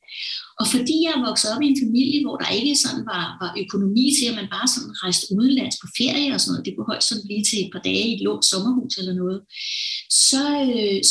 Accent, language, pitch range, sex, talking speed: native, Danish, 205-280 Hz, female, 245 wpm